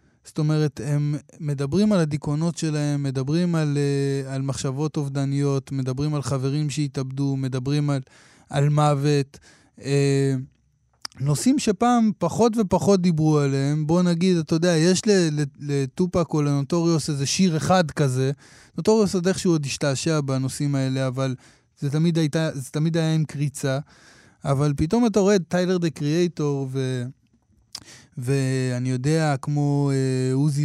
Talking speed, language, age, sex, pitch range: 135 wpm, Hebrew, 20-39, male, 135-160 Hz